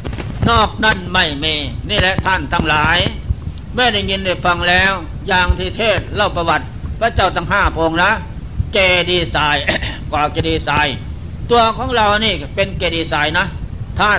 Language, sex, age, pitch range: Thai, male, 60-79, 155-190 Hz